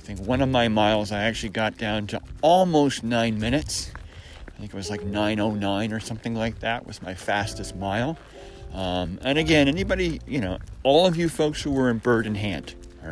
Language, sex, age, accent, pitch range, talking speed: English, male, 40-59, American, 95-130 Hz, 205 wpm